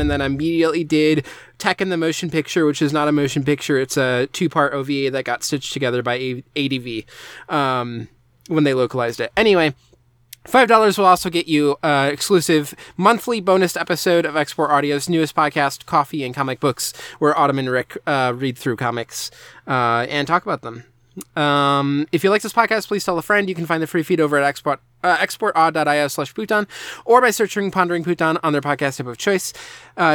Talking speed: 200 wpm